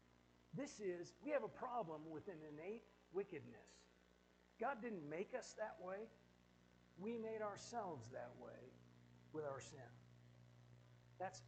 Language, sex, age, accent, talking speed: English, male, 60-79, American, 130 wpm